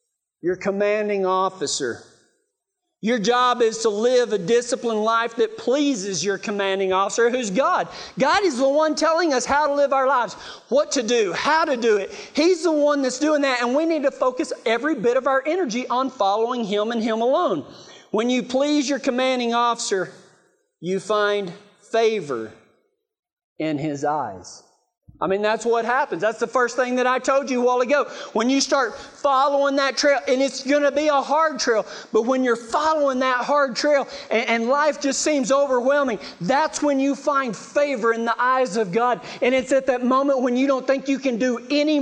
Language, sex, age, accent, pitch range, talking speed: English, male, 40-59, American, 215-275 Hz, 195 wpm